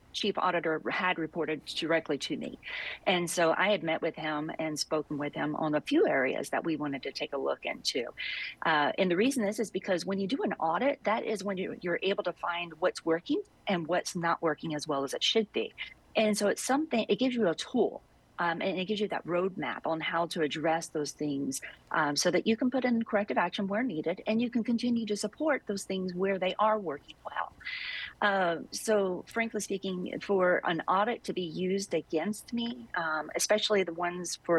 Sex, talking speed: female, 215 wpm